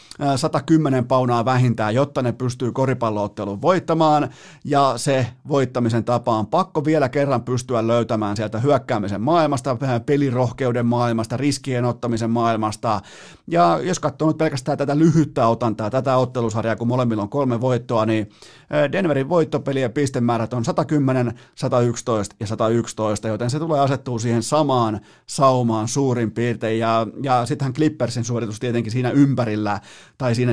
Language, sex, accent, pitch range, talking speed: Finnish, male, native, 115-140 Hz, 135 wpm